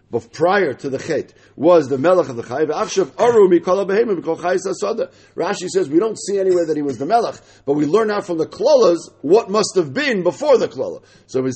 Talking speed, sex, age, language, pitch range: 195 wpm, male, 50-69, English, 150-220 Hz